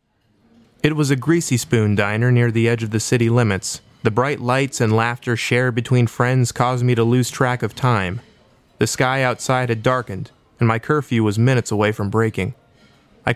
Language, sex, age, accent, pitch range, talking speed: English, male, 30-49, American, 105-125 Hz, 190 wpm